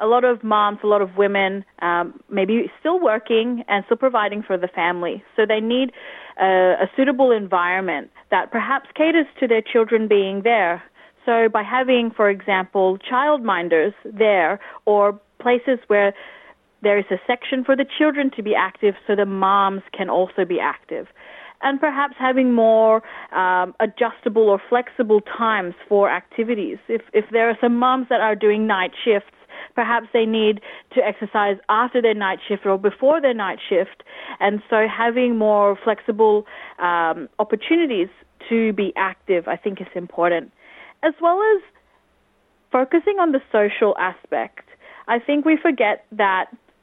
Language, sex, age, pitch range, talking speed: Filipino, female, 30-49, 200-255 Hz, 160 wpm